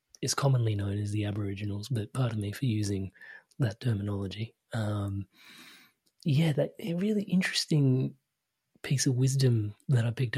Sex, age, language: male, 30-49, English